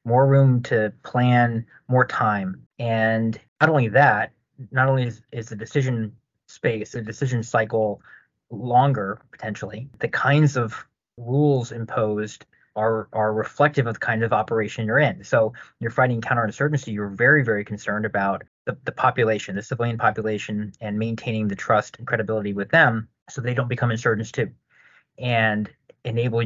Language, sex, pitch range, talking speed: English, male, 110-125 Hz, 155 wpm